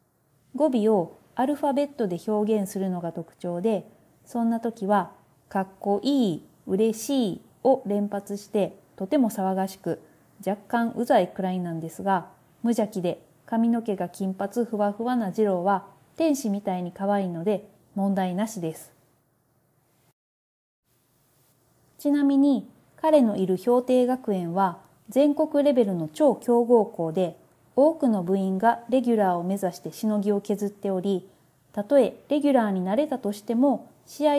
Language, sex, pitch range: Japanese, female, 185-255 Hz